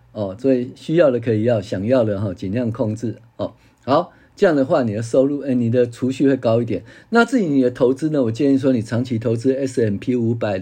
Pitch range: 110-140 Hz